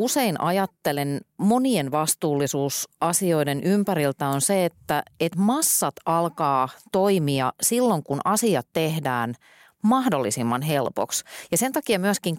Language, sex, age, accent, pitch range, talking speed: Finnish, female, 30-49, native, 140-190 Hz, 110 wpm